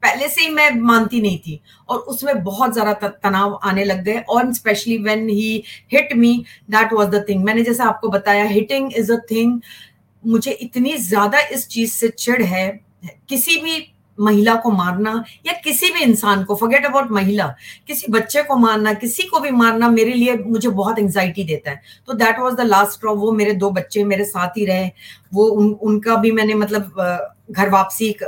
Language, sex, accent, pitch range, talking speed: Hindi, female, native, 195-235 Hz, 195 wpm